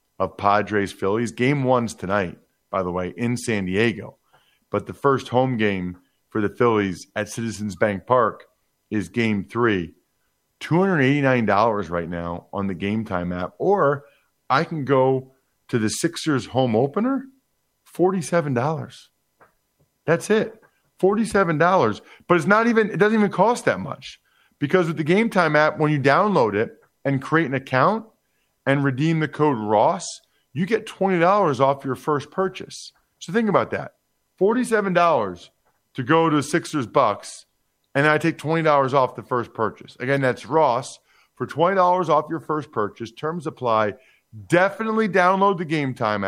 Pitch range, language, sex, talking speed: 115-170 Hz, English, male, 155 wpm